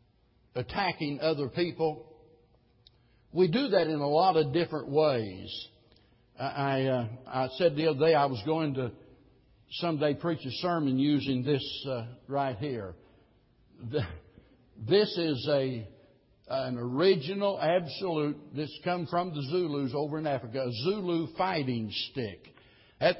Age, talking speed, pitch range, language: 60-79, 135 wpm, 130-165 Hz, English